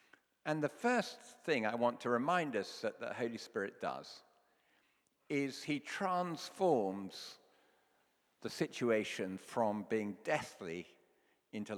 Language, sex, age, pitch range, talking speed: English, male, 50-69, 105-145 Hz, 115 wpm